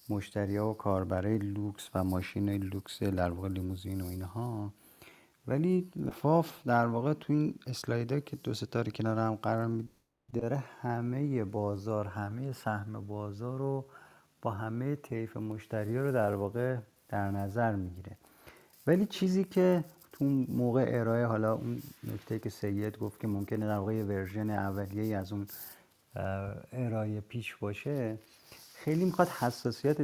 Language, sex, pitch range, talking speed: Persian, male, 105-125 Hz, 150 wpm